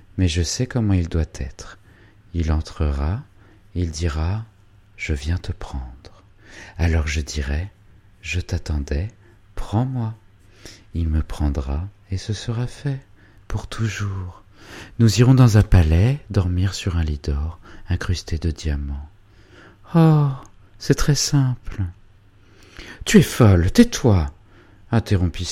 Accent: French